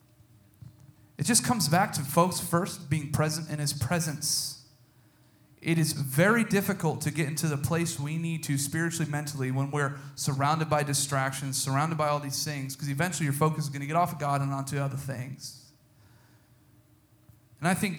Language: English